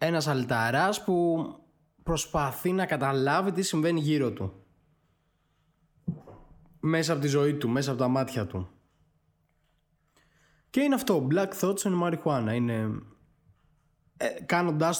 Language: Greek